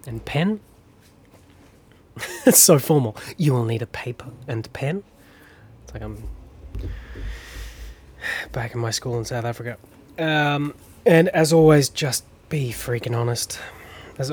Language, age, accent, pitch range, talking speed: English, 20-39, Australian, 95-125 Hz, 130 wpm